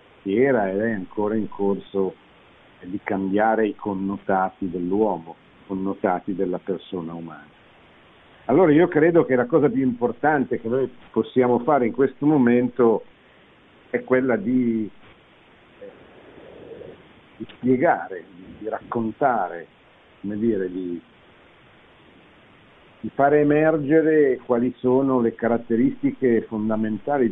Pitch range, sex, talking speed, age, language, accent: 100-135 Hz, male, 110 wpm, 50-69, Italian, native